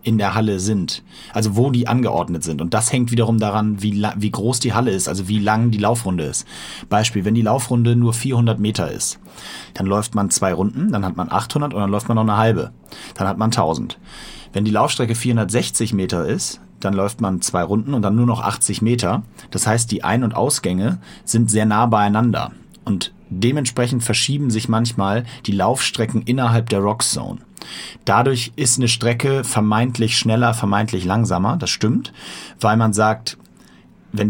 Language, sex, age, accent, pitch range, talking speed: German, male, 30-49, German, 100-120 Hz, 185 wpm